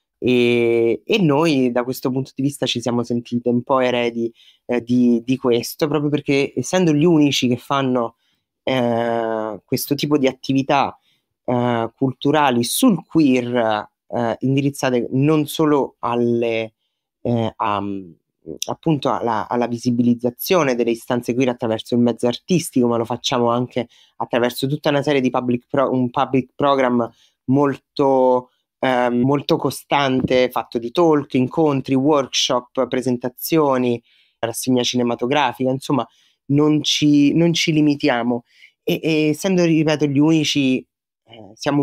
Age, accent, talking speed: 30-49, native, 130 wpm